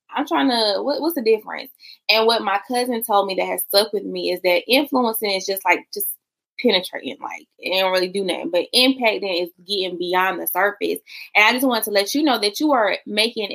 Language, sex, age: English, female, 20-39